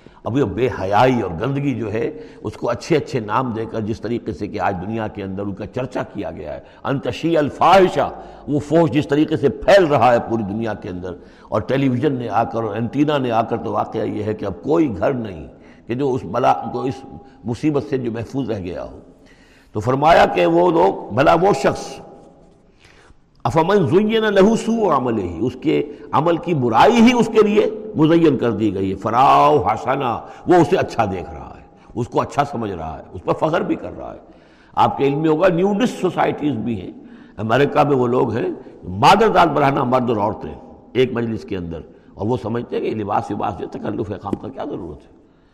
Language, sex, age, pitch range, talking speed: Urdu, male, 60-79, 115-165 Hz, 215 wpm